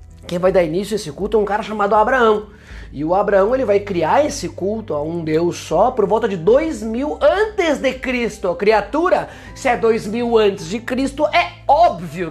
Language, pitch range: Portuguese, 175-235 Hz